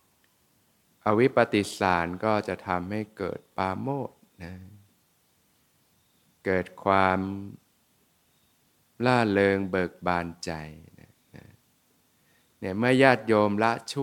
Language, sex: Thai, male